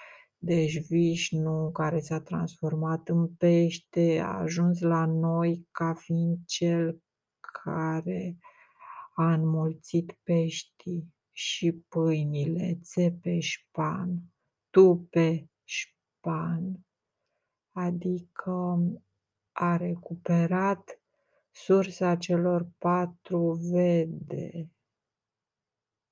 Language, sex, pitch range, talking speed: Romanian, female, 160-185 Hz, 75 wpm